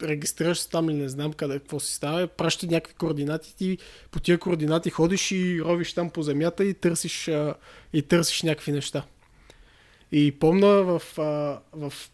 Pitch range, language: 150-180 Hz, Bulgarian